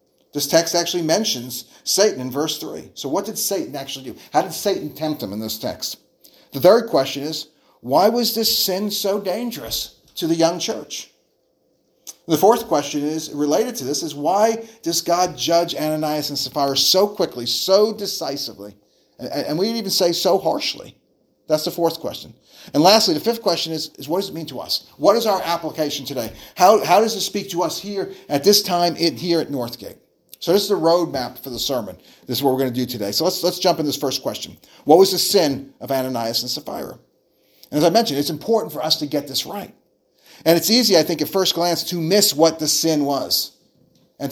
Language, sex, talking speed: English, male, 210 wpm